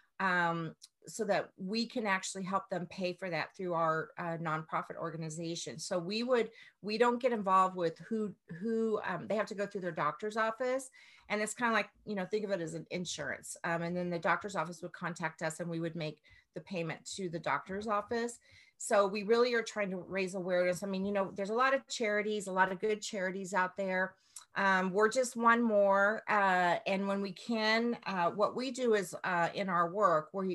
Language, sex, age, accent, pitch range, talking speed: English, female, 40-59, American, 175-215 Hz, 220 wpm